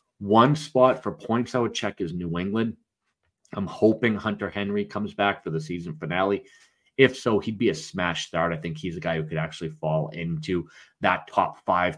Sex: male